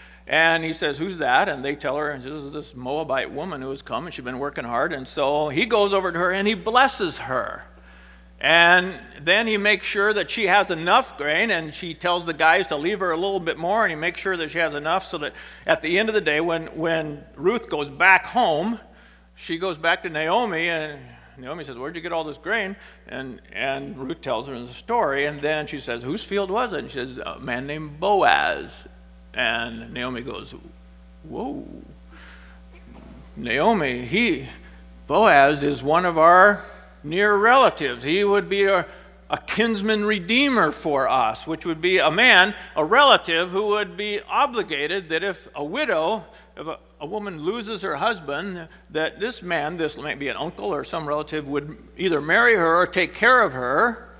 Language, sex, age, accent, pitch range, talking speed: English, male, 50-69, American, 140-195 Hz, 195 wpm